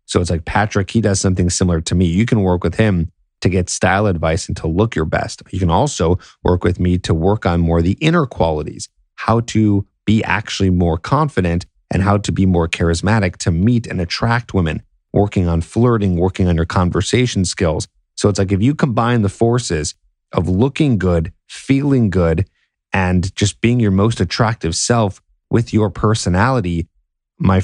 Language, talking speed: English, 190 wpm